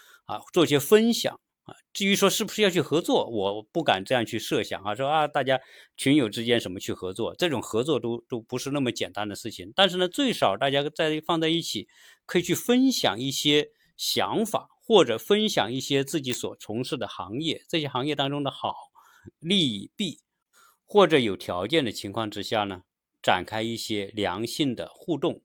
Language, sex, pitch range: Chinese, male, 115-165 Hz